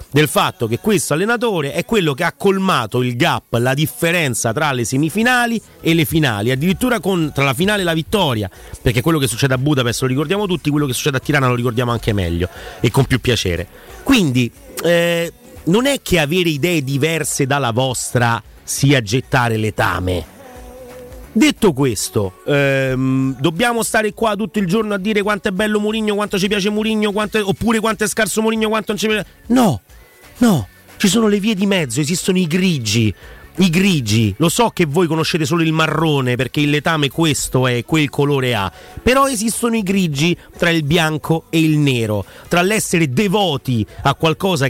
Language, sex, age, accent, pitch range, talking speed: Italian, male, 30-49, native, 125-190 Hz, 175 wpm